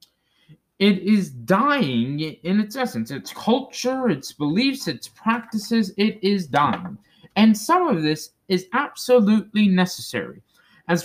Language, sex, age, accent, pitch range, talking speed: English, male, 20-39, American, 135-220 Hz, 125 wpm